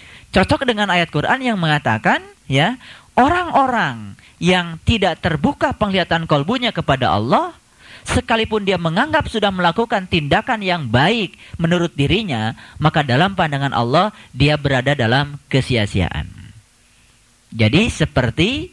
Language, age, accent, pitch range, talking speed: Indonesian, 30-49, native, 125-185 Hz, 110 wpm